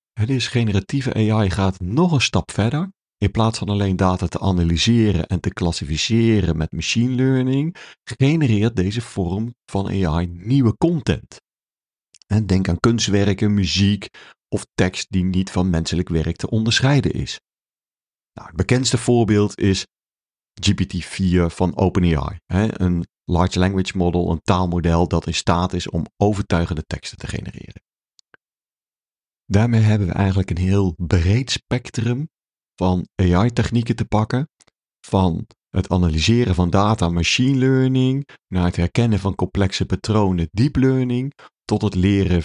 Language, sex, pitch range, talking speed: Dutch, male, 90-115 Hz, 135 wpm